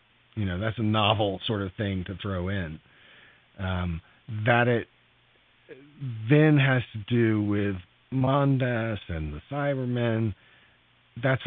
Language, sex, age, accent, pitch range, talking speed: English, male, 40-59, American, 100-130 Hz, 125 wpm